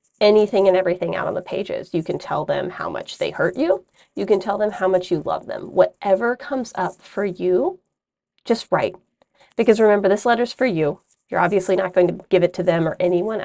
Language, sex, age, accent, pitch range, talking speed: English, female, 30-49, American, 180-230 Hz, 220 wpm